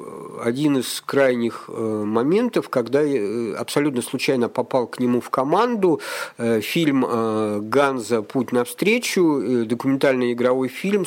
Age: 50-69